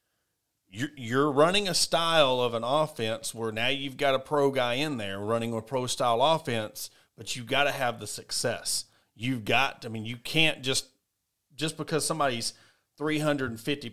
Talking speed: 170 wpm